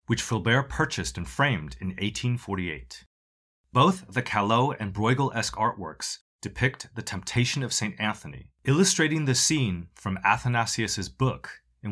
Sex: male